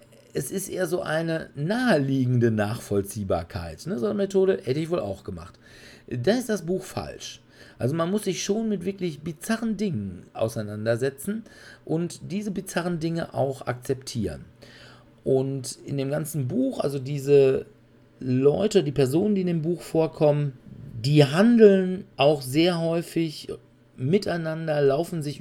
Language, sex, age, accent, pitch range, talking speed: German, male, 40-59, German, 120-165 Hz, 140 wpm